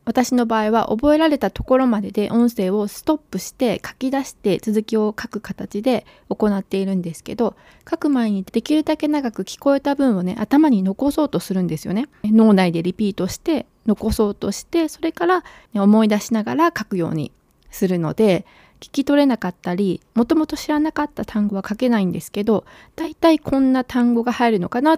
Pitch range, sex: 195-265 Hz, female